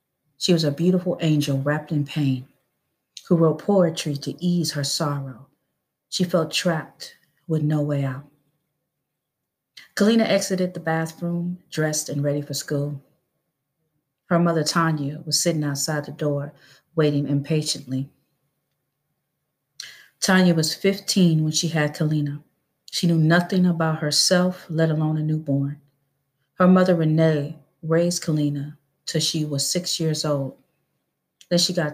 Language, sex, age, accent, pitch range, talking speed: English, female, 40-59, American, 145-170 Hz, 135 wpm